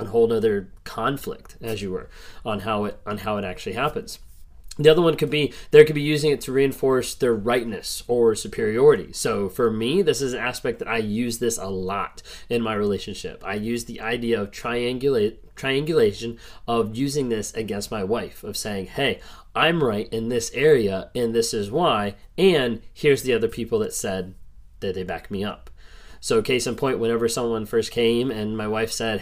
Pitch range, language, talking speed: 105-140 Hz, English, 195 wpm